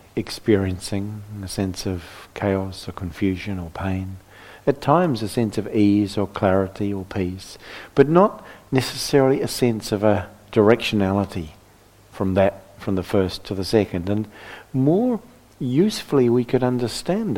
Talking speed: 140 wpm